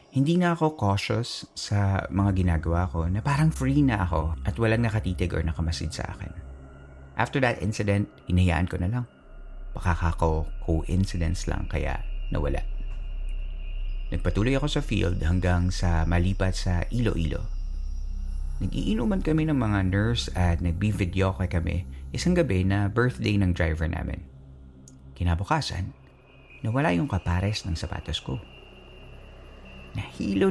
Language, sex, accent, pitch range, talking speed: Filipino, male, native, 85-110 Hz, 125 wpm